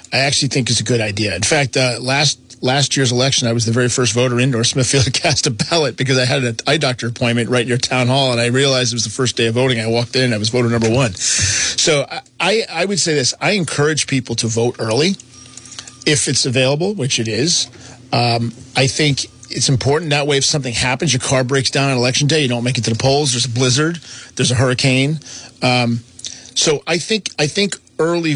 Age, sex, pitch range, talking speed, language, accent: 40-59, male, 120-140 Hz, 235 wpm, English, American